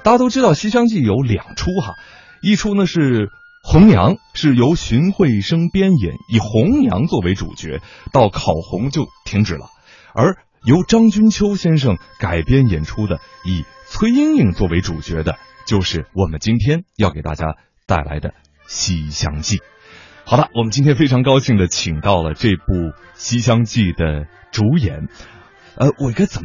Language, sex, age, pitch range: Chinese, male, 30-49, 90-140 Hz